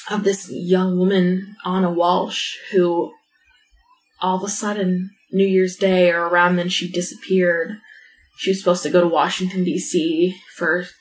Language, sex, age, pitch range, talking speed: English, female, 20-39, 180-245 Hz, 155 wpm